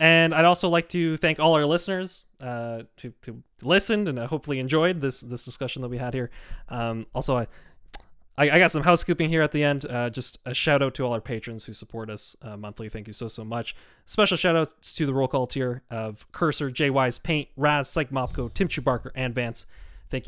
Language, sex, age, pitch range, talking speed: English, male, 20-39, 120-160 Hz, 220 wpm